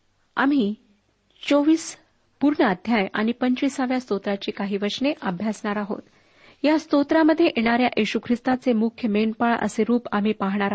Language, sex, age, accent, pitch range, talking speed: Marathi, female, 40-59, native, 205-260 Hz, 105 wpm